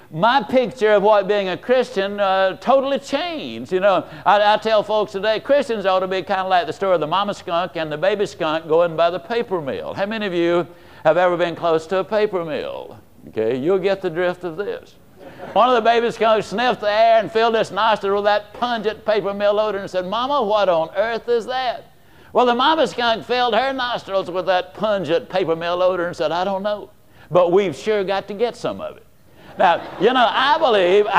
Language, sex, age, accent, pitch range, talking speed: English, male, 60-79, American, 185-235 Hz, 225 wpm